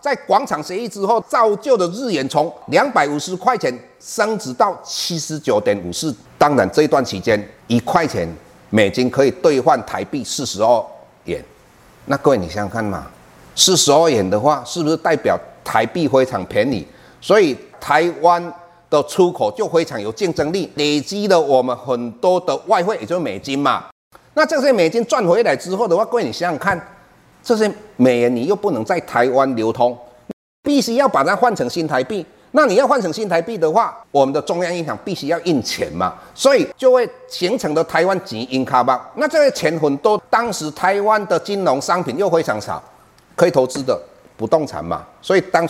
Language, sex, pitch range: Chinese, male, 130-215 Hz